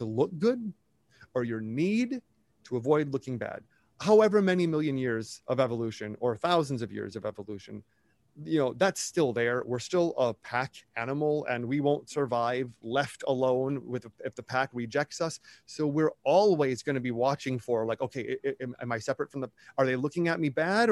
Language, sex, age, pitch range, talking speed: English, male, 30-49, 125-175 Hz, 185 wpm